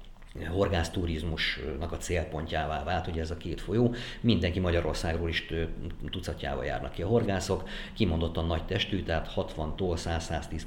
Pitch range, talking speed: 80-95 Hz, 125 wpm